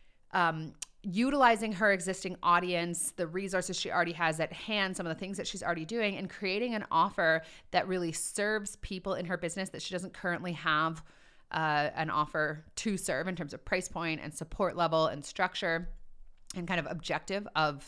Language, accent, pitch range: English, American, 165-205 Hz